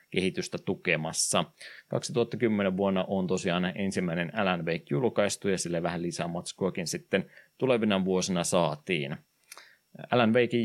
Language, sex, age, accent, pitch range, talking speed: Finnish, male, 20-39, native, 90-110 Hz, 120 wpm